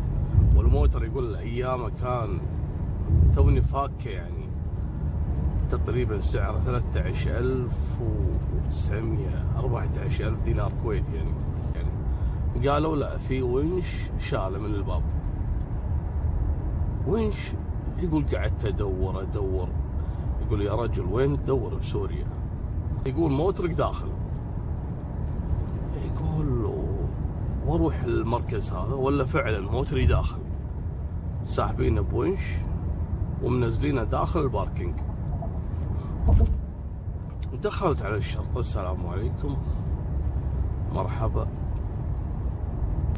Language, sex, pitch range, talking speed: Arabic, male, 80-105 Hz, 75 wpm